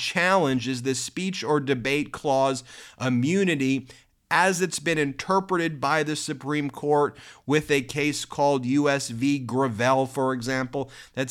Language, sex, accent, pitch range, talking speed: English, male, American, 135-165 Hz, 140 wpm